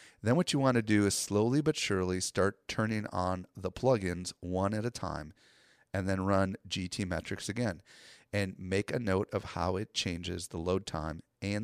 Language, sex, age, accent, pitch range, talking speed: English, male, 30-49, American, 90-110 Hz, 190 wpm